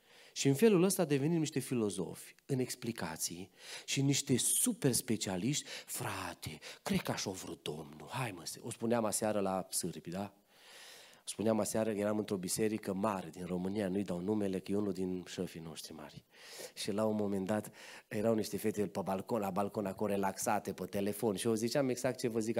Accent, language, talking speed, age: native, Romanian, 185 wpm, 30-49